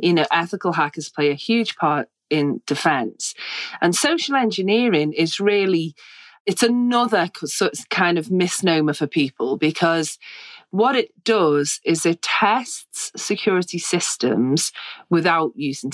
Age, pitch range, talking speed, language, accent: 30-49, 145-195 Hz, 125 wpm, English, British